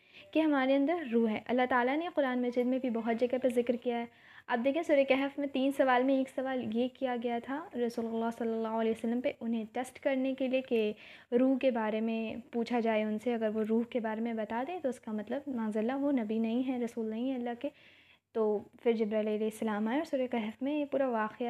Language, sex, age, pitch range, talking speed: Urdu, female, 20-39, 225-260 Hz, 245 wpm